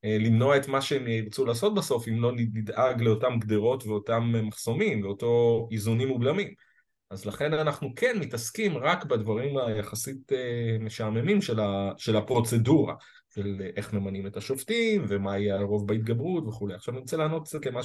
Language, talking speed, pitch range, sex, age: Hebrew, 150 wpm, 105-135 Hz, male, 30-49